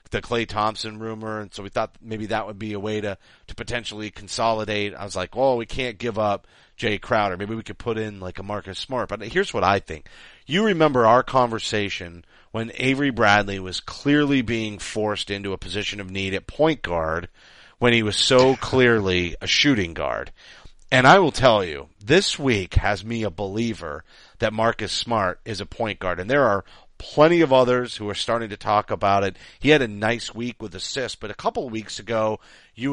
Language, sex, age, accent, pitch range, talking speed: English, male, 40-59, American, 100-125 Hz, 205 wpm